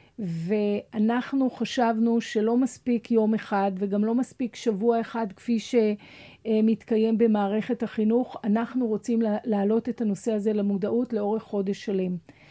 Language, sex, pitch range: Hebrew, female, 215-250 Hz